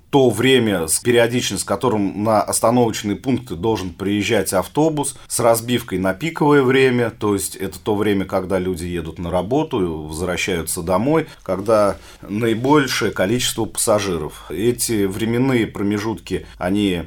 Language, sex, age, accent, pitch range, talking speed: Russian, male, 40-59, native, 95-120 Hz, 135 wpm